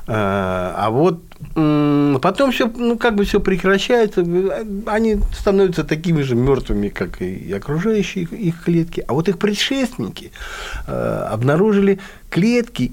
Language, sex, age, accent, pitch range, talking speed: Russian, male, 50-69, native, 125-190 Hz, 110 wpm